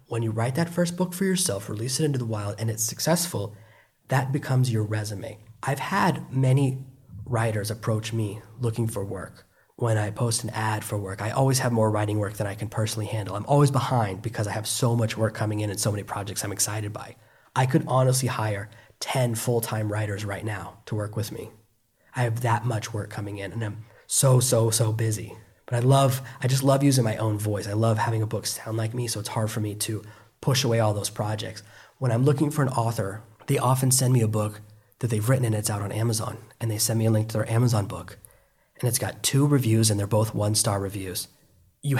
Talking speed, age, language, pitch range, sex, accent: 230 wpm, 20-39, English, 105-125 Hz, male, American